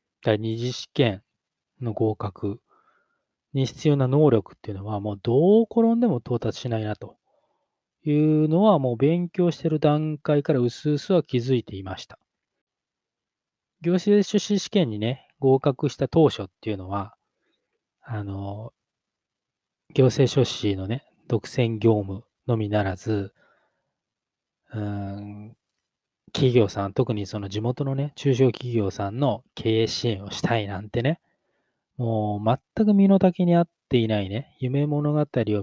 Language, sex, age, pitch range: Japanese, male, 20-39, 105-150 Hz